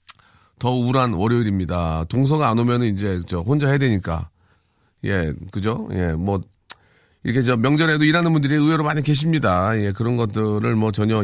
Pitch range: 110-165 Hz